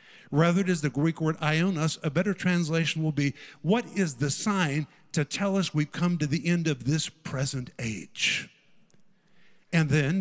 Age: 50-69